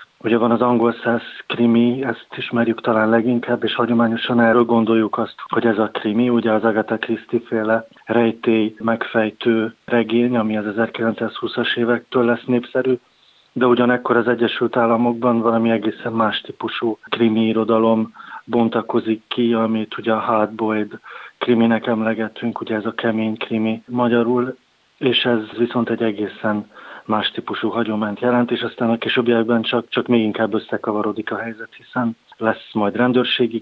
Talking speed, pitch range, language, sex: 145 wpm, 110-120 Hz, Hungarian, male